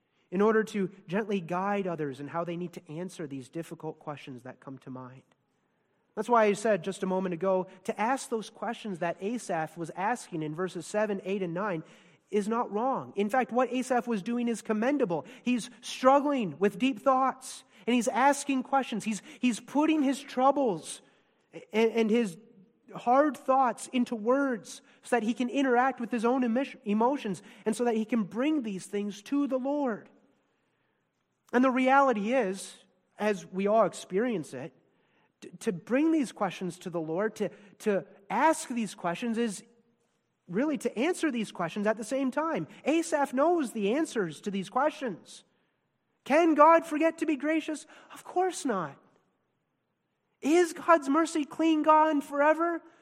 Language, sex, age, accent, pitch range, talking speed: English, male, 30-49, American, 195-270 Hz, 165 wpm